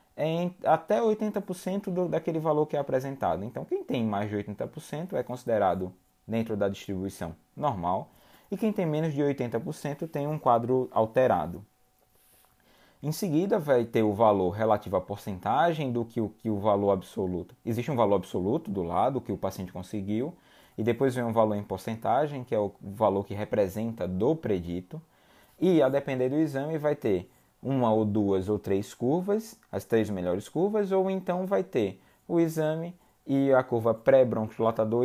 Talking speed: 165 wpm